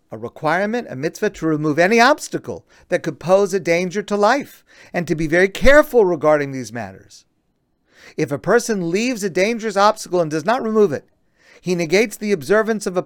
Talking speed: 190 wpm